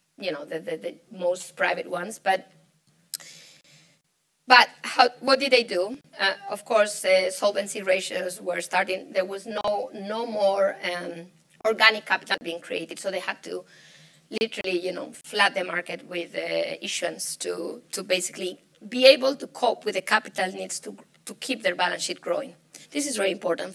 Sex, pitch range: female, 180-225 Hz